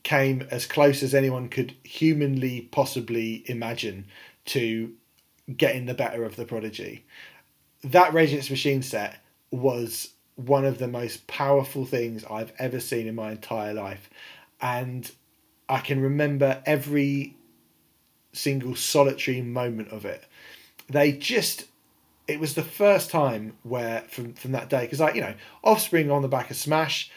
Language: English